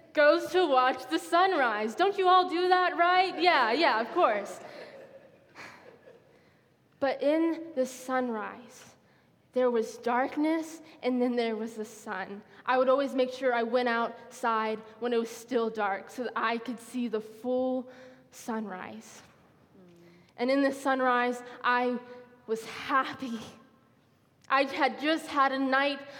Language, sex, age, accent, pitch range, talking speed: English, female, 10-29, American, 230-270 Hz, 140 wpm